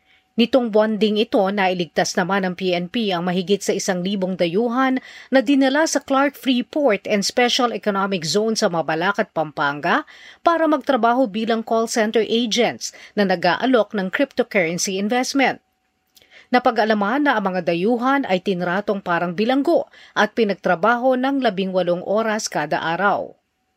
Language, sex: Filipino, female